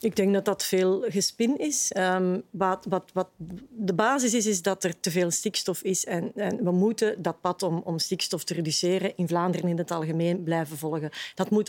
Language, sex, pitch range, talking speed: Dutch, female, 175-205 Hz, 210 wpm